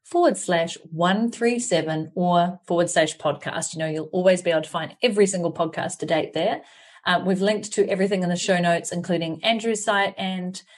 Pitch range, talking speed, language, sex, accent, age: 165-205 Hz, 190 wpm, English, female, Australian, 30-49